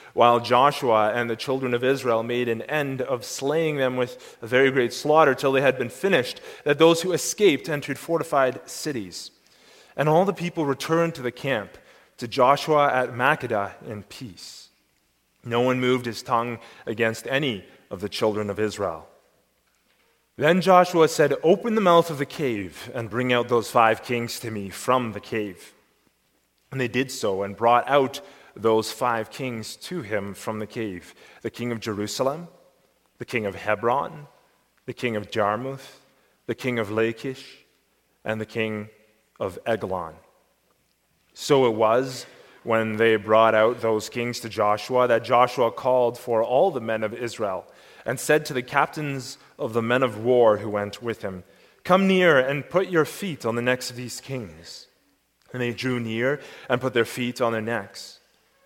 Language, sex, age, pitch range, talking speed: English, male, 30-49, 110-135 Hz, 175 wpm